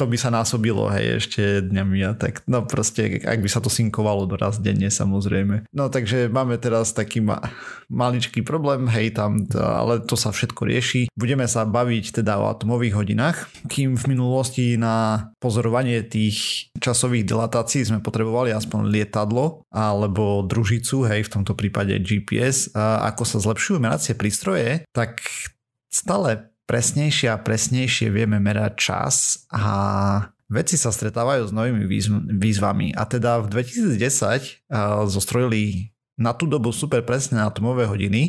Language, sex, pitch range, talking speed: Slovak, male, 105-125 Hz, 145 wpm